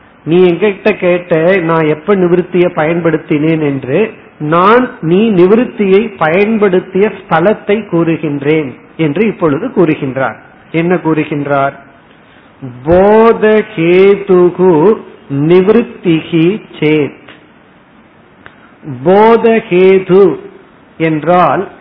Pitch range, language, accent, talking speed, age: 155-200 Hz, Tamil, native, 55 wpm, 50-69